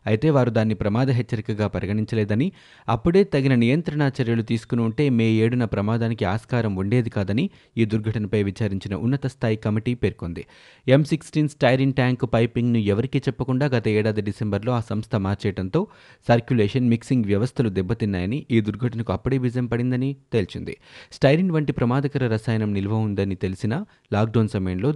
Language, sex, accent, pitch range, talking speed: Telugu, male, native, 105-130 Hz, 140 wpm